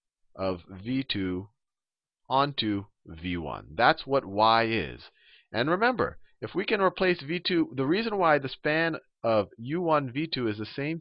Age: 40-59